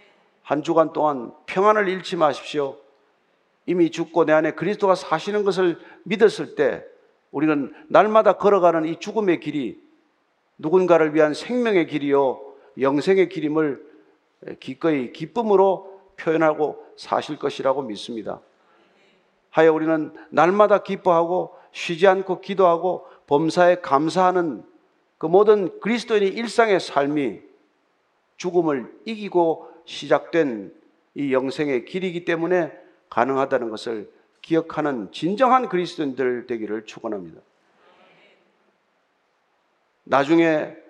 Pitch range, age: 160-235 Hz, 50-69